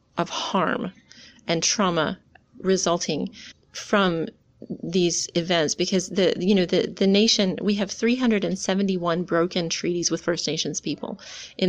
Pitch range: 175-200 Hz